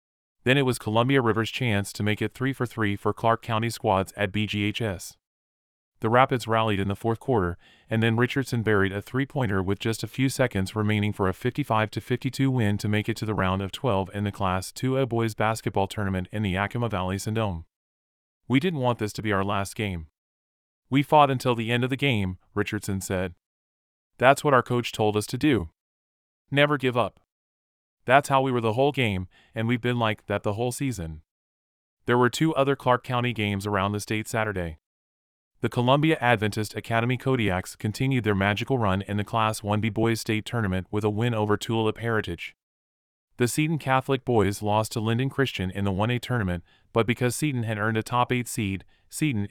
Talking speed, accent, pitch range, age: 195 wpm, American, 95-125 Hz, 30-49